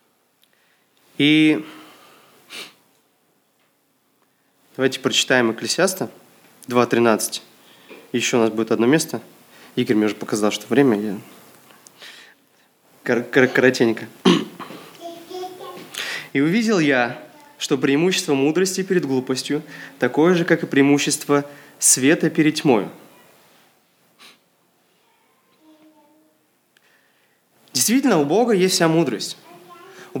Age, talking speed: 20-39, 80 wpm